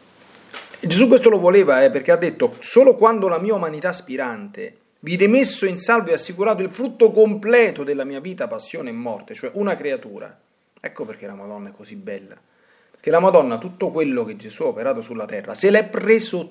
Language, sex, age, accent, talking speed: Italian, male, 30-49, native, 195 wpm